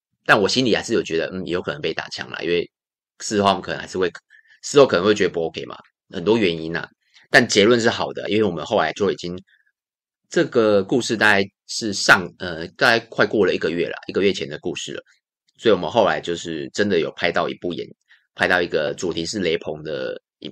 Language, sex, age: Chinese, male, 30-49